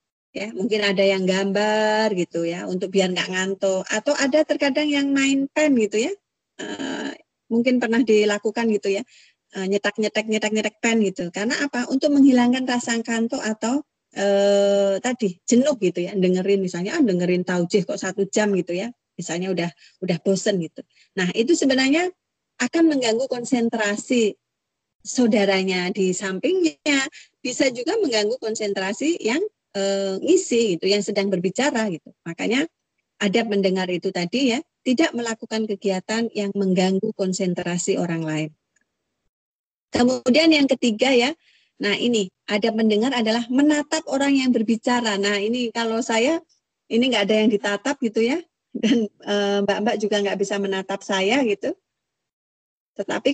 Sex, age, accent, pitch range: female, 30-49, native, 195-255 Hz